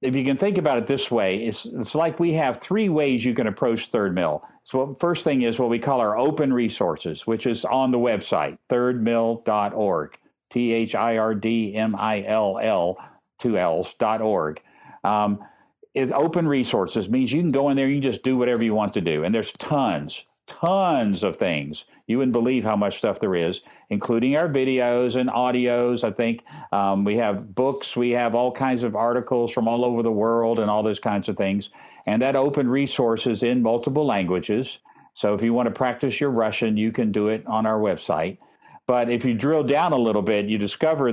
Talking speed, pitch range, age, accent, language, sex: 205 wpm, 110-135 Hz, 50-69, American, English, male